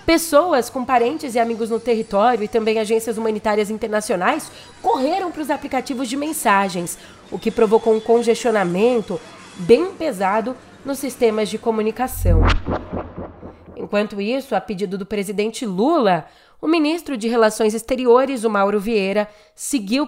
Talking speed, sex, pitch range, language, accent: 135 wpm, female, 200-250 Hz, Portuguese, Brazilian